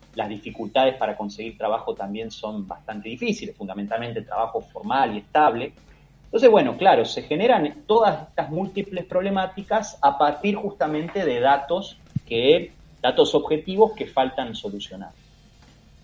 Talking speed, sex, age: 125 wpm, male, 30-49